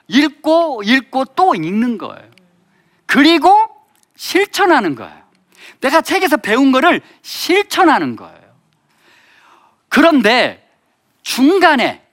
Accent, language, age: native, Korean, 40-59